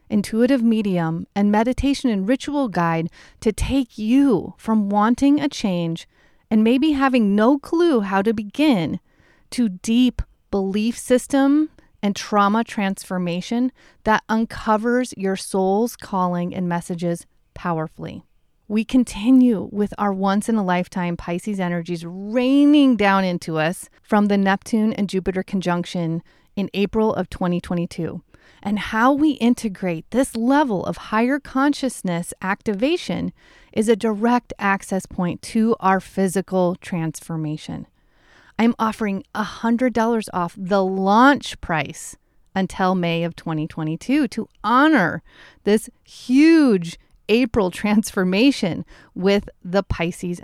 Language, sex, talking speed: English, female, 115 wpm